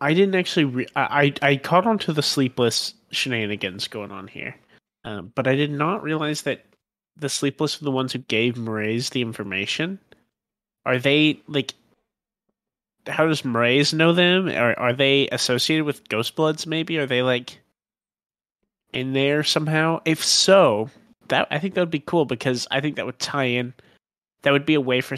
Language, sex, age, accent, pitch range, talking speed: English, male, 30-49, American, 115-150 Hz, 185 wpm